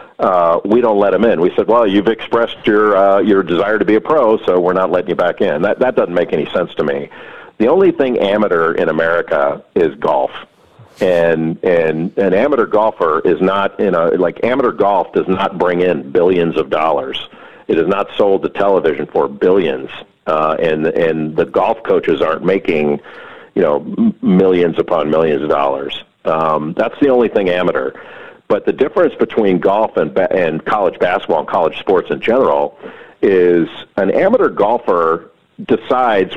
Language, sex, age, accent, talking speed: English, male, 50-69, American, 180 wpm